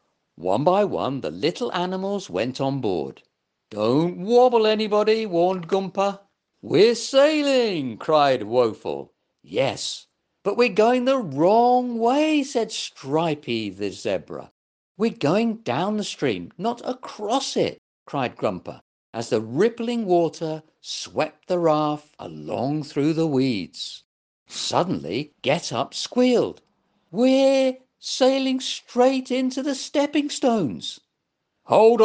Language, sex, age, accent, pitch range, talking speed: English, male, 50-69, British, 165-240 Hz, 115 wpm